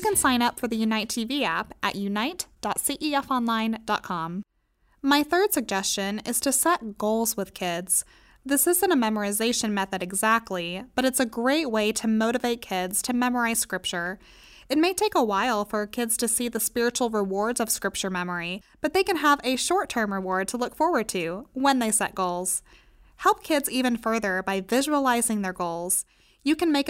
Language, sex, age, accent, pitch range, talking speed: English, female, 20-39, American, 205-265 Hz, 175 wpm